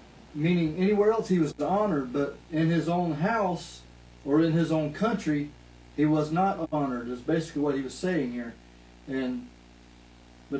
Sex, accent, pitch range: male, American, 125-175 Hz